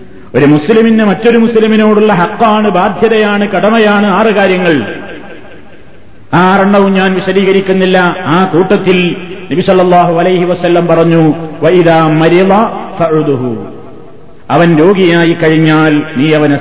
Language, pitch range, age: Malayalam, 185-210 Hz, 50-69